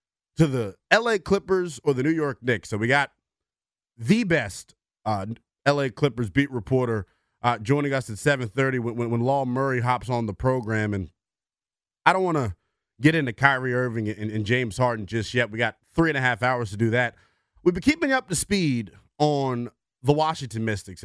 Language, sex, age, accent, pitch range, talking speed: English, male, 30-49, American, 110-145 Hz, 195 wpm